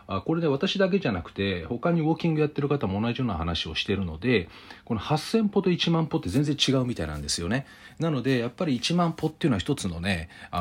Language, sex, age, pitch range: Japanese, male, 40-59, 100-155 Hz